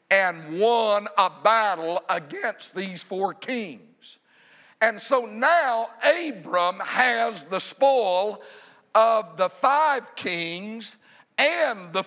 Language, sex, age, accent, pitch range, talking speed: English, male, 50-69, American, 165-225 Hz, 105 wpm